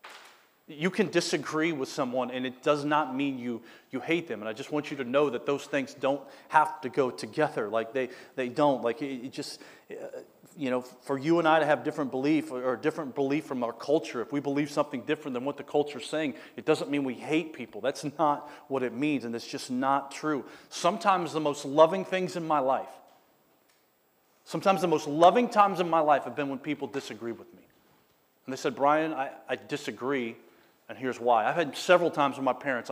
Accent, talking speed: American, 215 wpm